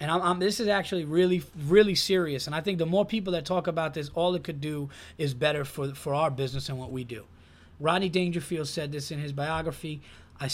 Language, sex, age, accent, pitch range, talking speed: English, male, 30-49, American, 135-170 Hz, 235 wpm